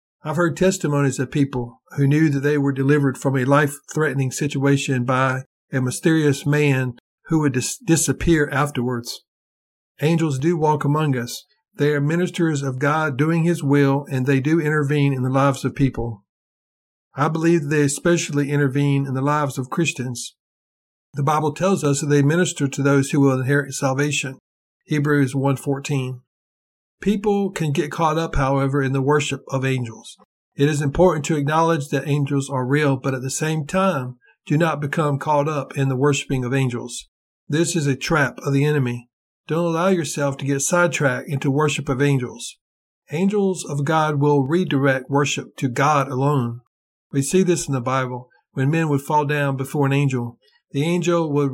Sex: male